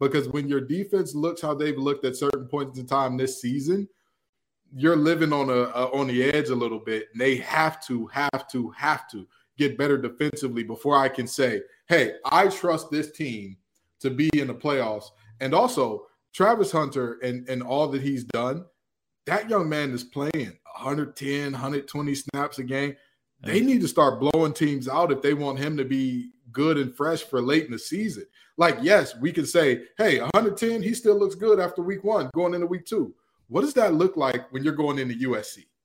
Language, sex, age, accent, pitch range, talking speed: English, male, 20-39, American, 135-165 Hz, 200 wpm